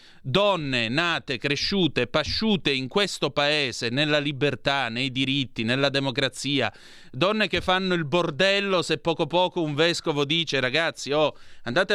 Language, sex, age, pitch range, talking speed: Italian, male, 30-49, 135-175 Hz, 135 wpm